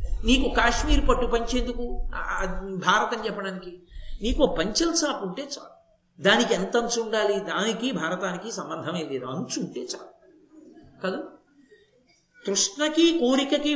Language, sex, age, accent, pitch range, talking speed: Telugu, male, 50-69, native, 205-285 Hz, 105 wpm